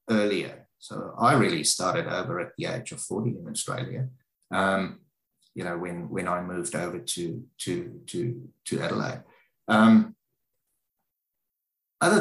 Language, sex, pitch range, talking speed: English, male, 100-120 Hz, 140 wpm